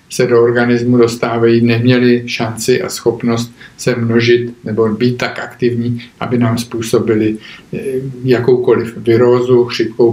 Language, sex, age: Czech, male, 50-69